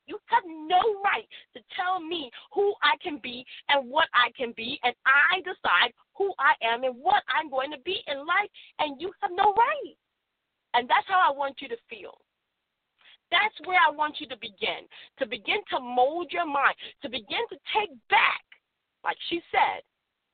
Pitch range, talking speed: 295-420 Hz, 190 wpm